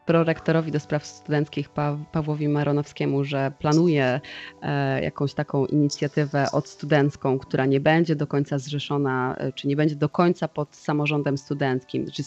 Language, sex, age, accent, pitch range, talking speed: Polish, female, 20-39, native, 145-185 Hz, 140 wpm